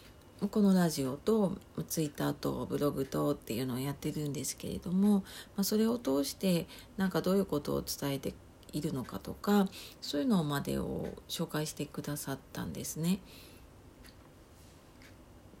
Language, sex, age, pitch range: Japanese, female, 40-59, 145-195 Hz